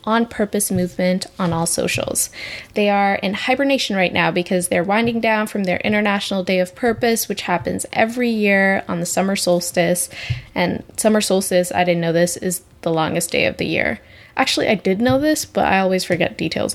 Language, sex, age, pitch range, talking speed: English, female, 10-29, 180-225 Hz, 190 wpm